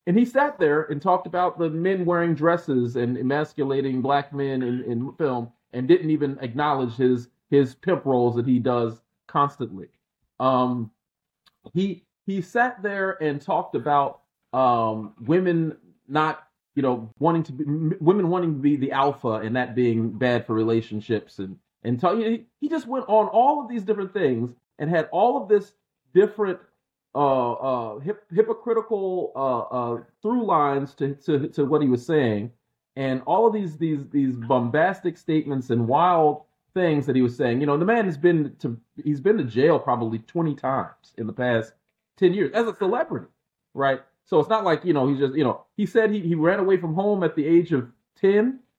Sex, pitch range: male, 125-175 Hz